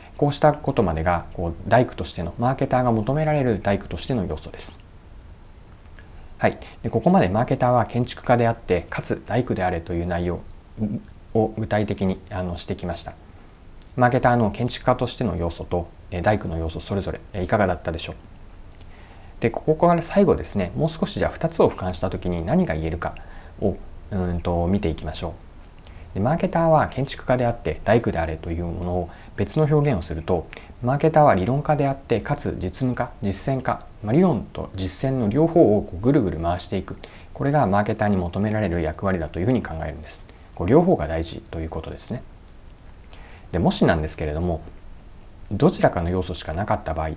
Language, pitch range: Japanese, 85-115 Hz